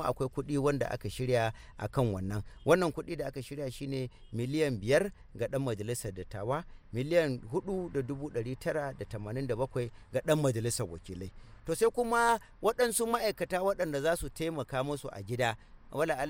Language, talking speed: English, 160 wpm